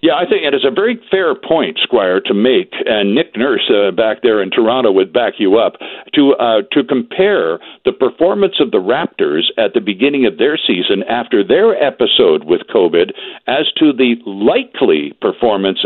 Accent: American